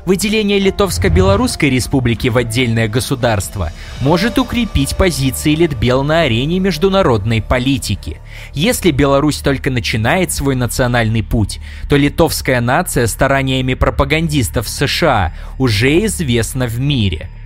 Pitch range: 110-145 Hz